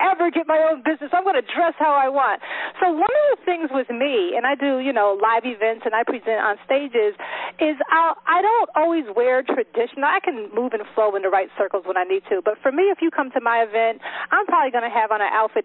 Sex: female